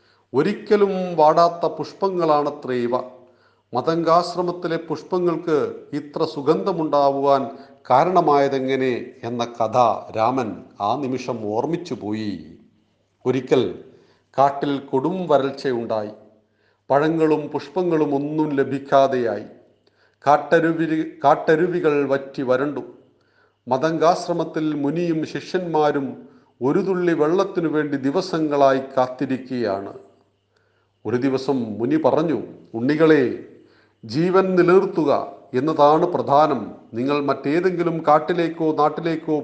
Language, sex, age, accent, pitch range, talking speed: Malayalam, male, 40-59, native, 130-170 Hz, 70 wpm